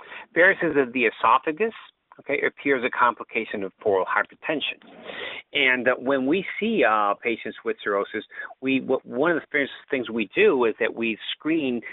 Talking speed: 155 wpm